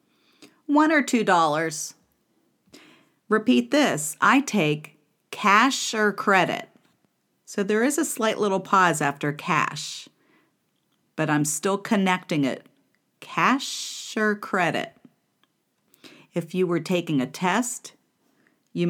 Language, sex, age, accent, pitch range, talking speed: English, female, 40-59, American, 155-230 Hz, 110 wpm